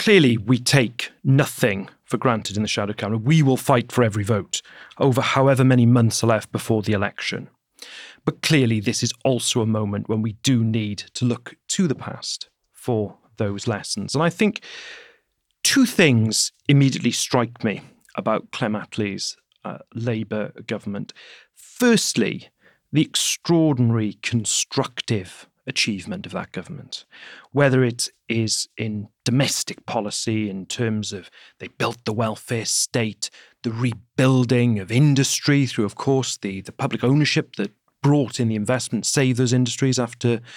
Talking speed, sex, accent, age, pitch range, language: 150 wpm, male, British, 40-59, 115-145 Hz, English